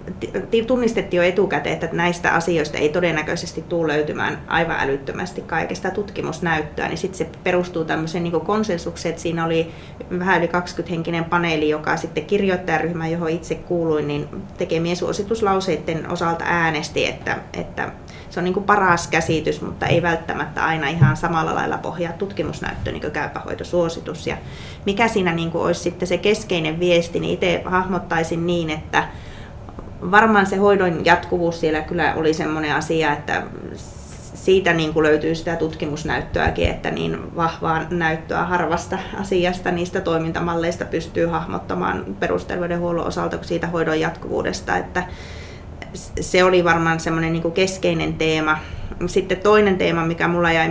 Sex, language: female, Finnish